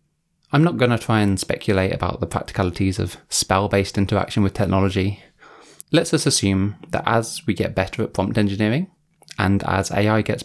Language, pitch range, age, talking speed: English, 100-120 Hz, 20-39, 170 wpm